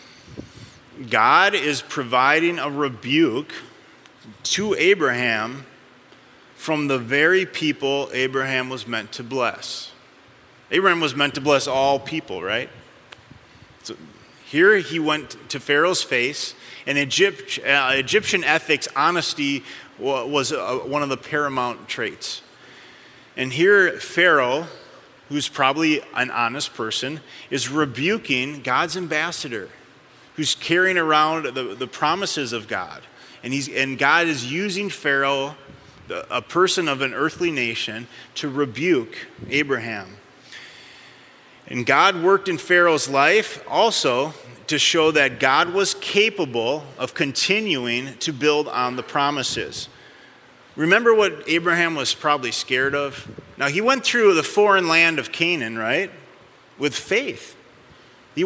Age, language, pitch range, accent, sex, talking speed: 30-49, English, 135-175 Hz, American, male, 120 wpm